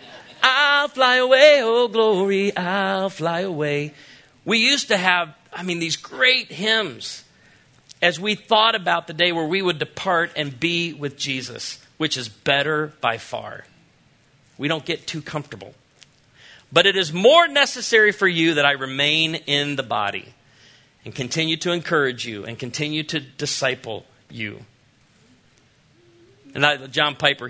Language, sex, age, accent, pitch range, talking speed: English, male, 40-59, American, 130-170 Hz, 145 wpm